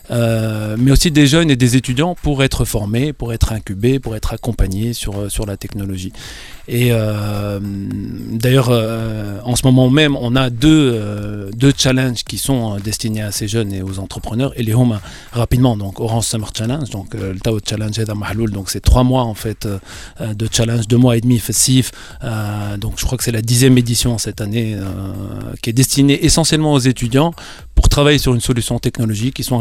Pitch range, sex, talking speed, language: 105-130 Hz, male, 200 wpm, Arabic